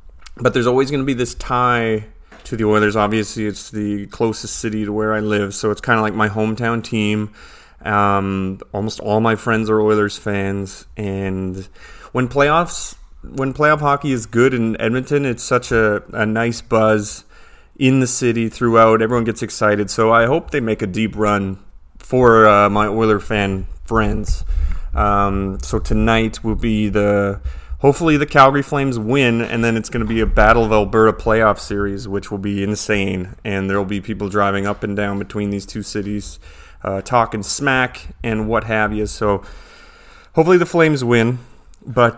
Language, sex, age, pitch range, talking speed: English, male, 30-49, 100-120 Hz, 180 wpm